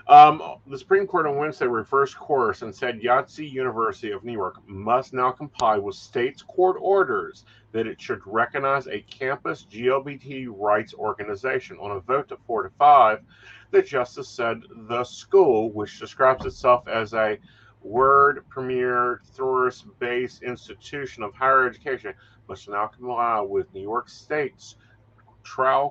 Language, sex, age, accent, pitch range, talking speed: English, male, 40-59, American, 110-155 Hz, 145 wpm